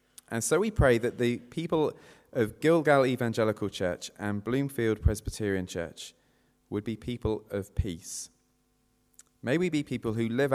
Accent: British